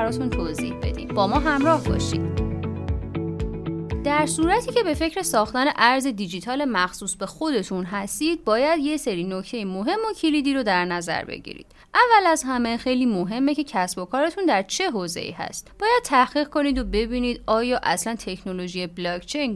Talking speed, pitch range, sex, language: 155 wpm, 185-290 Hz, female, Persian